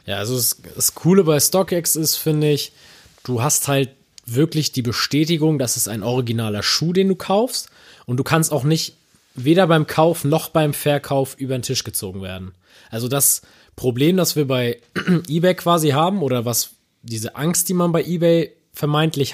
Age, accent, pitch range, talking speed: 20-39, German, 125-170 Hz, 180 wpm